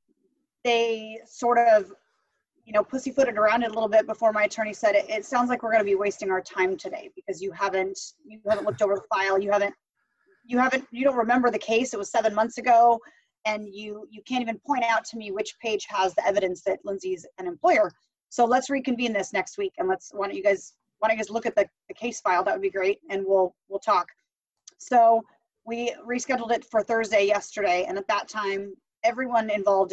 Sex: female